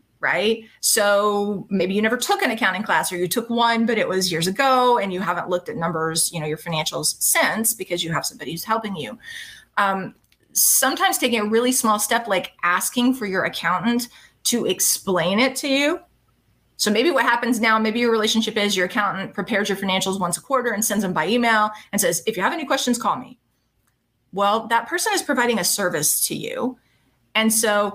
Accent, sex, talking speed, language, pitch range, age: American, female, 205 wpm, English, 185-240 Hz, 30-49